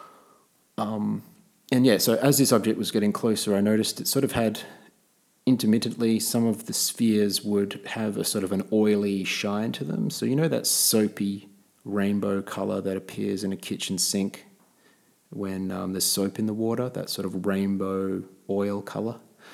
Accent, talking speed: Australian, 175 wpm